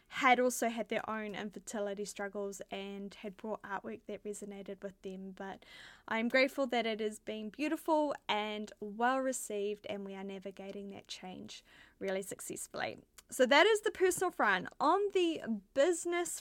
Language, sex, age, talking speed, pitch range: English, female, 10-29, 155 wpm, 210-285 Hz